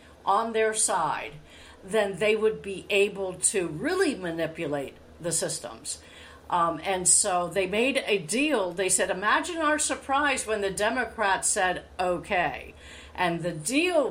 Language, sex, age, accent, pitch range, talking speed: English, female, 50-69, American, 160-215 Hz, 140 wpm